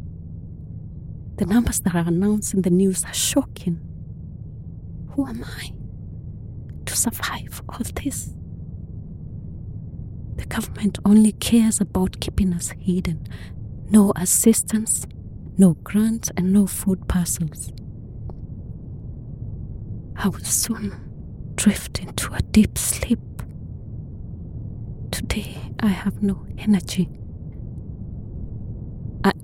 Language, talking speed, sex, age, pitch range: English, 95 wpm, female, 30-49, 110-185 Hz